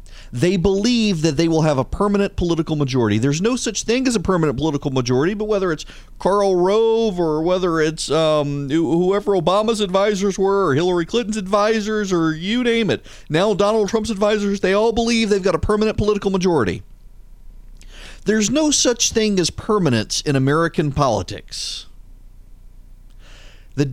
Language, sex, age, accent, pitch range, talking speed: English, male, 40-59, American, 130-195 Hz, 160 wpm